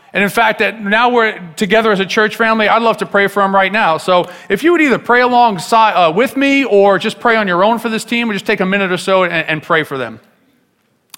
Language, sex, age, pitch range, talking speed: English, male, 40-59, 140-170 Hz, 270 wpm